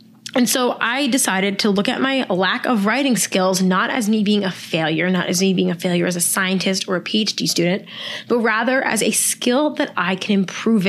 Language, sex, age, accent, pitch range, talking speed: English, female, 20-39, American, 190-245 Hz, 220 wpm